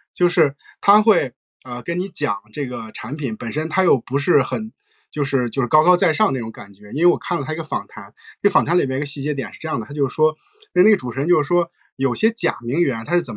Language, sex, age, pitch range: Chinese, male, 20-39, 135-205 Hz